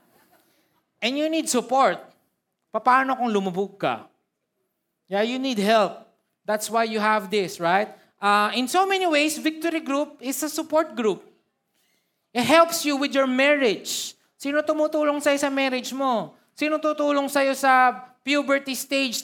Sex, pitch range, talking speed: male, 215-275 Hz, 145 wpm